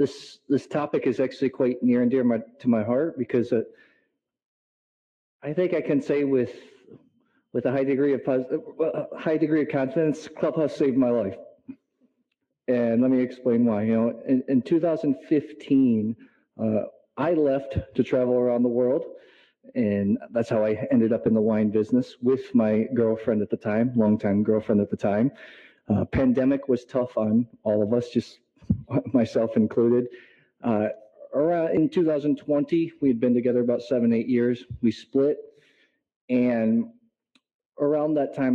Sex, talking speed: male, 160 wpm